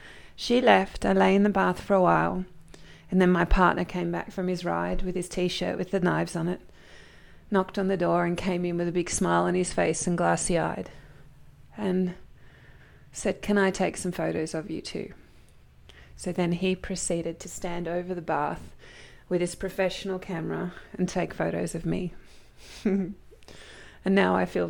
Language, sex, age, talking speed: English, female, 20-39, 185 wpm